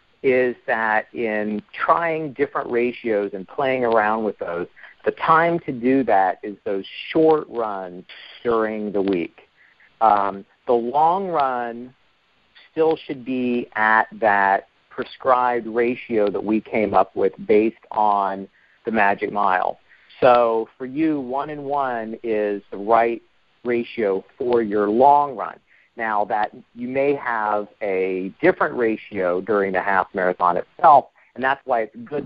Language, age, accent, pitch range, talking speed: English, 40-59, American, 105-130 Hz, 140 wpm